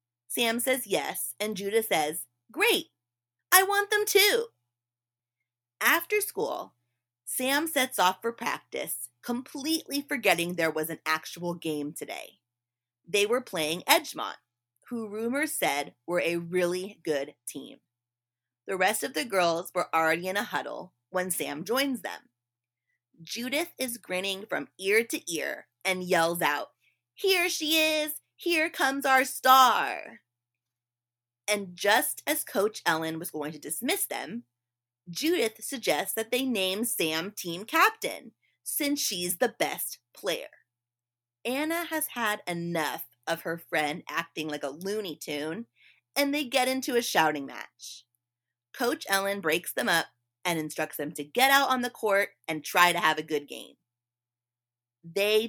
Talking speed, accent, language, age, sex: 145 wpm, American, English, 30-49, female